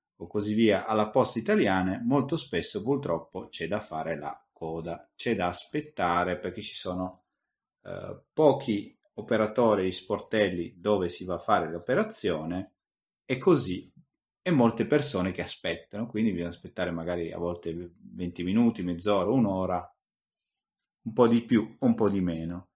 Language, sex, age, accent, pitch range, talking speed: Italian, male, 30-49, native, 90-115 Hz, 150 wpm